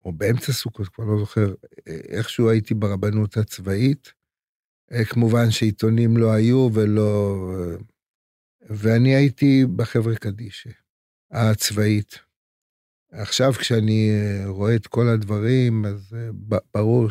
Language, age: Hebrew, 50-69